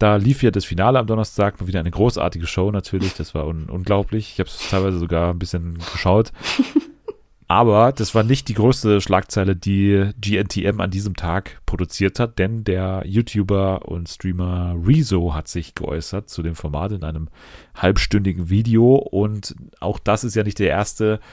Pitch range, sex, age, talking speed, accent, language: 90-105 Hz, male, 30-49, 170 wpm, German, German